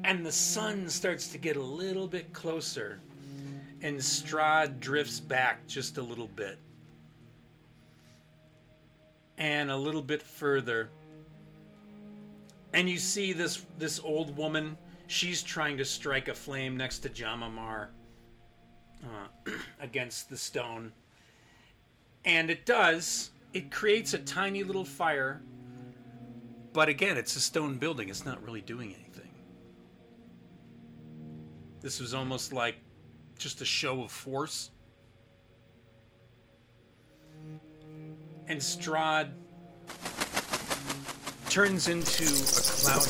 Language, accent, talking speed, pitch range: English, American, 110 wpm, 120-160 Hz